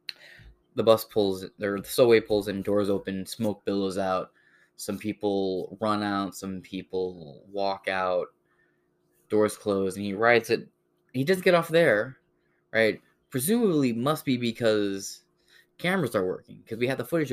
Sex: male